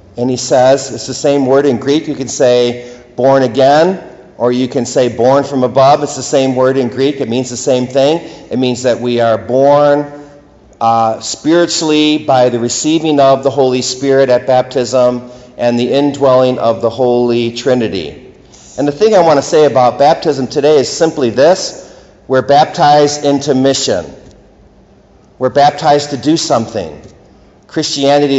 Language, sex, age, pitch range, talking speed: English, male, 50-69, 120-140 Hz, 165 wpm